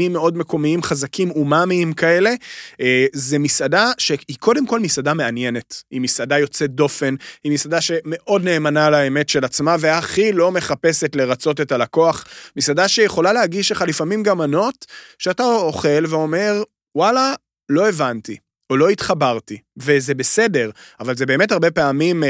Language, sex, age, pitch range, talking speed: Hebrew, male, 30-49, 135-170 Hz, 135 wpm